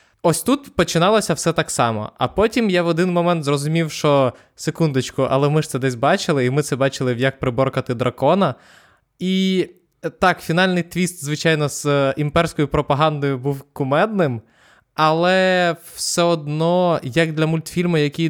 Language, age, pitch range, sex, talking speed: Ukrainian, 20-39, 135-175 Hz, male, 150 wpm